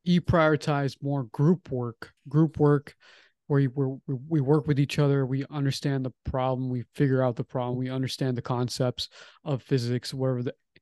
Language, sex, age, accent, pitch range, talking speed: English, male, 20-39, American, 125-145 Hz, 170 wpm